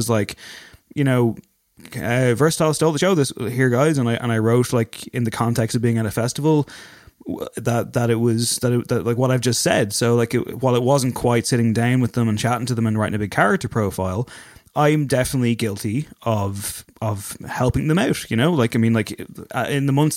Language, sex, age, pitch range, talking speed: English, male, 20-39, 110-140 Hz, 225 wpm